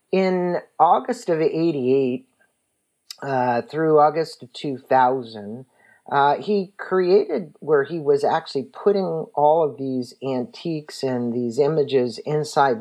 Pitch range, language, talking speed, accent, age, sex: 125-160 Hz, English, 115 wpm, American, 40-59, male